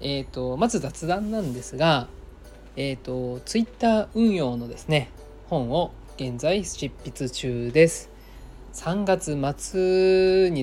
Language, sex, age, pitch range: Japanese, male, 20-39, 120-165 Hz